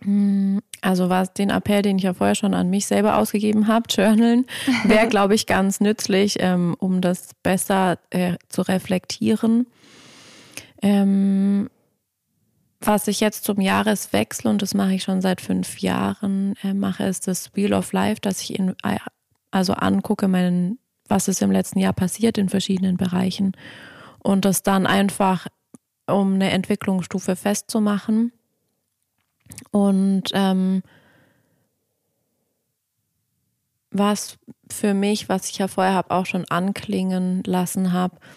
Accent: German